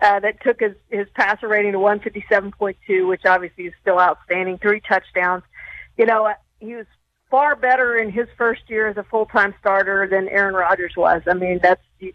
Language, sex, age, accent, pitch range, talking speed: English, female, 50-69, American, 195-225 Hz, 195 wpm